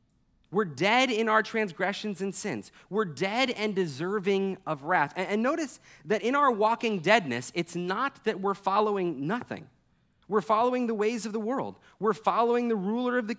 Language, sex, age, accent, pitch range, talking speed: English, male, 30-49, American, 175-225 Hz, 175 wpm